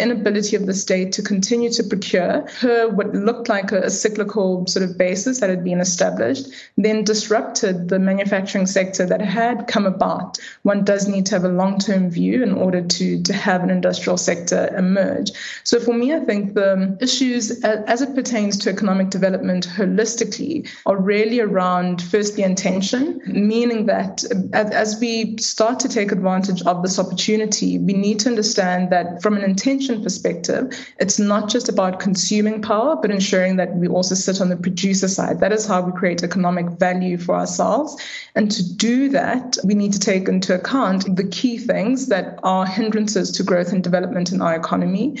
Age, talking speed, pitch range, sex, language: 20-39, 180 wpm, 185-225 Hz, female, English